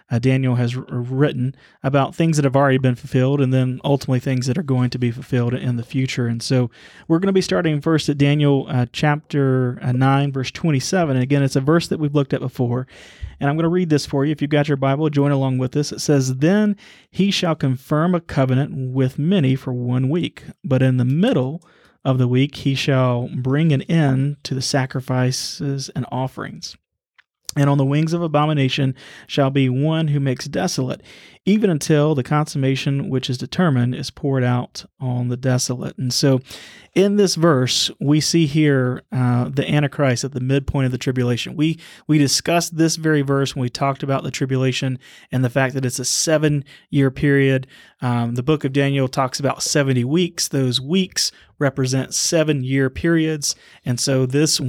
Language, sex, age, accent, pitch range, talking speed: English, male, 30-49, American, 130-150 Hz, 190 wpm